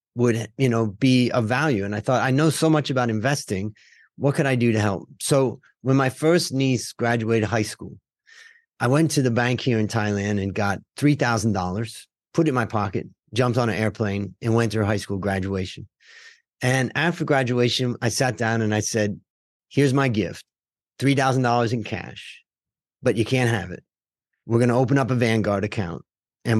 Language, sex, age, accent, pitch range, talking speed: English, male, 30-49, American, 105-135 Hz, 200 wpm